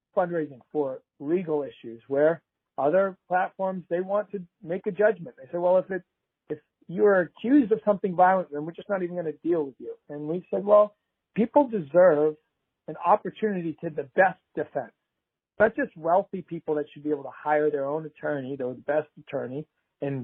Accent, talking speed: American, 185 wpm